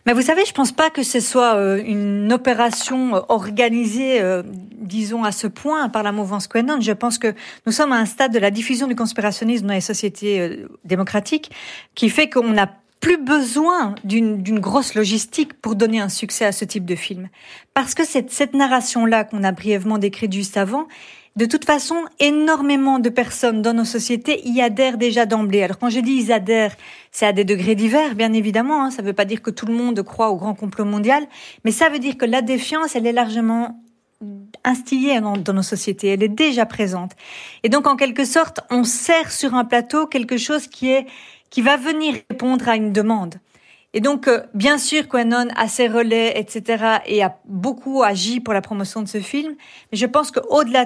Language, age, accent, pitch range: French, 40-59, French, 210-265 Hz